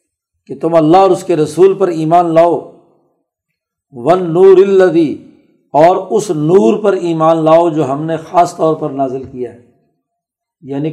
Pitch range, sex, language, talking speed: 150-185 Hz, male, Urdu, 160 wpm